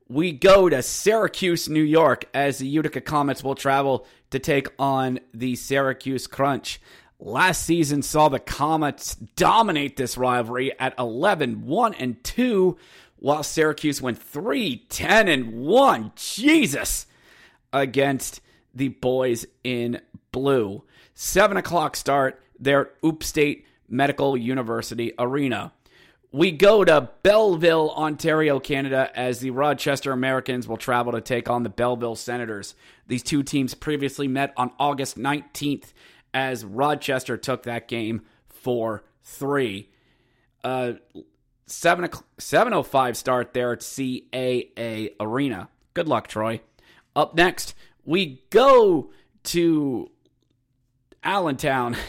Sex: male